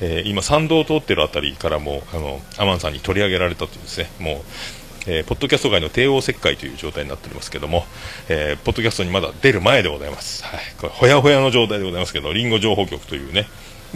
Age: 40-59